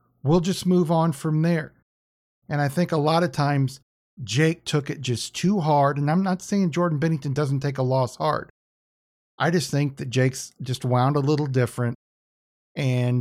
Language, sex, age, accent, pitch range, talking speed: English, male, 50-69, American, 125-160 Hz, 185 wpm